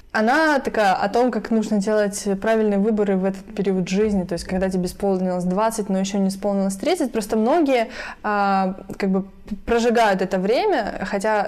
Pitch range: 190-225 Hz